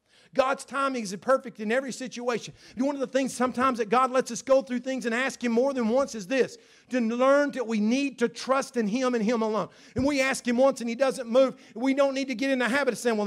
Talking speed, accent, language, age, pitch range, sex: 265 wpm, American, English, 50-69, 190-255 Hz, male